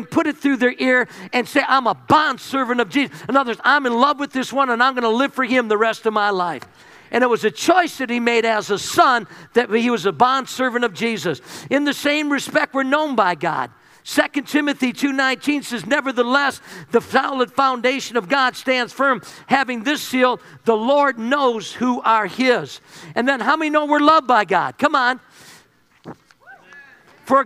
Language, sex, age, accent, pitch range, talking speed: English, male, 50-69, American, 240-285 Hz, 200 wpm